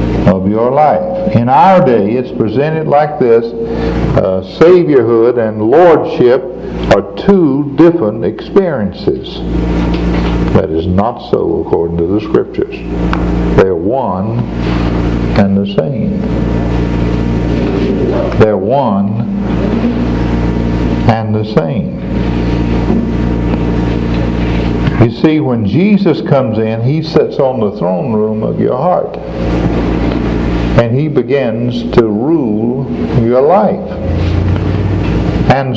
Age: 60-79